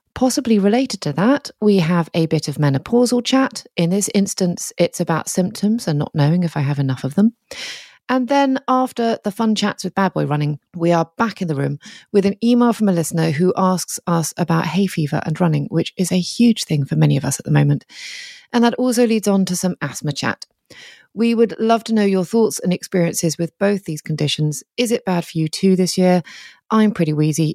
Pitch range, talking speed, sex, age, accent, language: 160-220 Hz, 220 wpm, female, 30-49, British, English